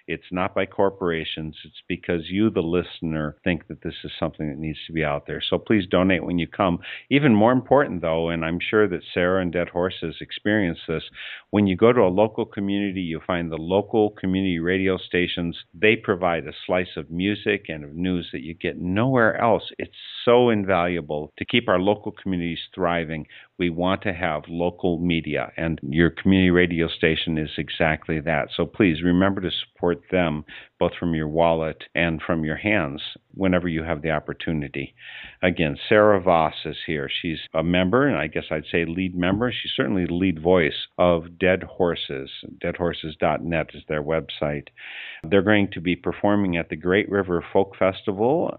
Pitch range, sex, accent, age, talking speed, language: 80-95 Hz, male, American, 50-69, 185 wpm, English